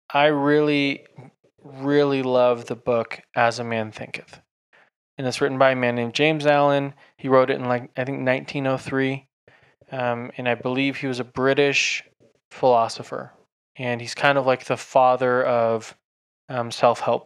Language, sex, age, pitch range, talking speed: English, male, 20-39, 120-140 Hz, 170 wpm